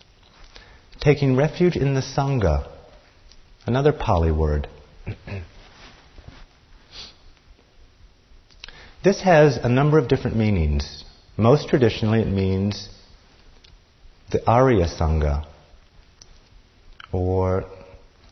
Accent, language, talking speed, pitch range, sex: American, English, 75 wpm, 85-120 Hz, male